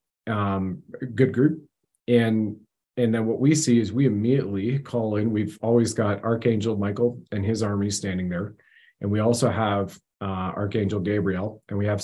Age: 40-59